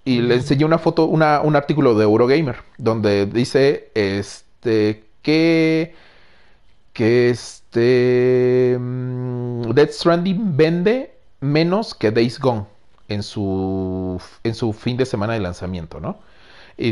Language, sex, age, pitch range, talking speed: Spanish, male, 40-59, 100-135 Hz, 125 wpm